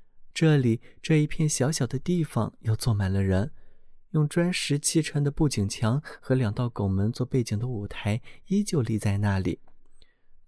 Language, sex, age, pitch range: Chinese, male, 20-39, 110-150 Hz